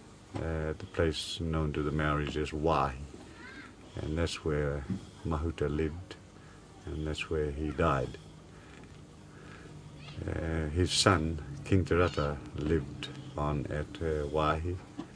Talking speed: 115 wpm